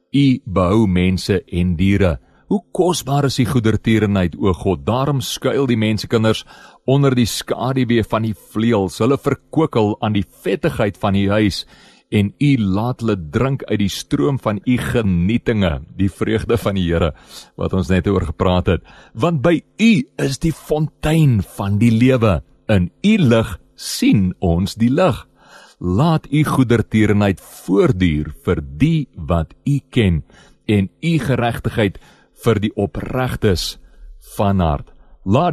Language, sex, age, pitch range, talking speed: English, male, 40-59, 95-135 Hz, 145 wpm